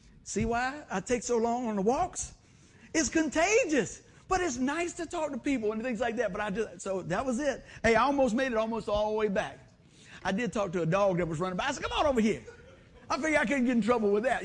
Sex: male